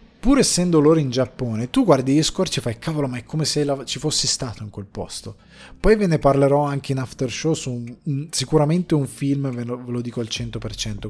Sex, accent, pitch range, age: male, native, 110-140 Hz, 20-39